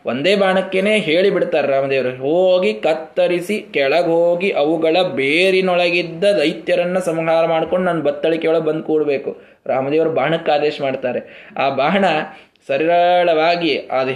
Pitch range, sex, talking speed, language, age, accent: 160-195 Hz, male, 110 wpm, Kannada, 20-39, native